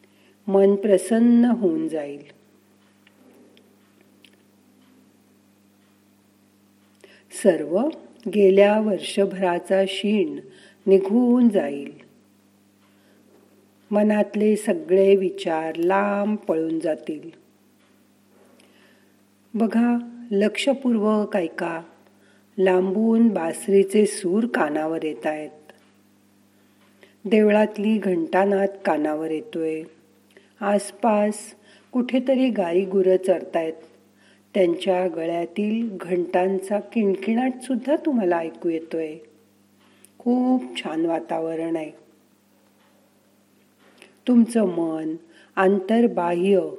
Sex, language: female, Marathi